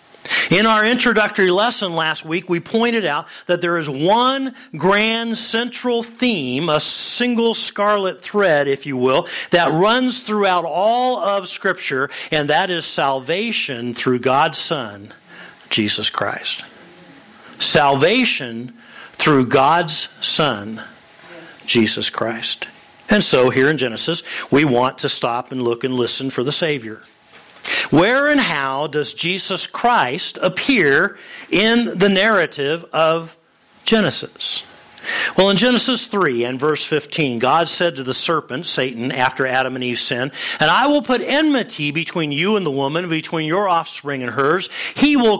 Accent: American